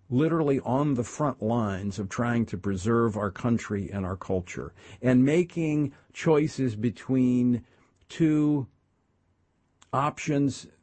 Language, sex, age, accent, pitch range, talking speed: English, male, 50-69, American, 100-130 Hz, 110 wpm